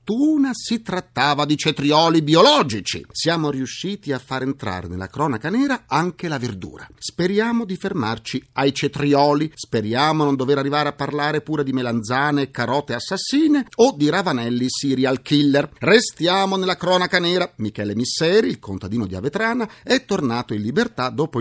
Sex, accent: male, native